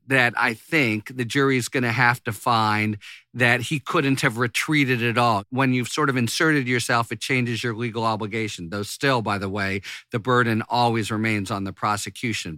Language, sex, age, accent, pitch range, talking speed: English, male, 50-69, American, 115-145 Hz, 195 wpm